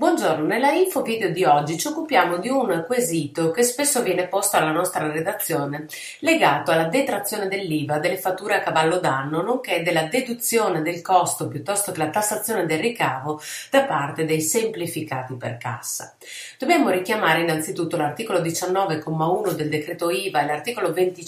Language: Italian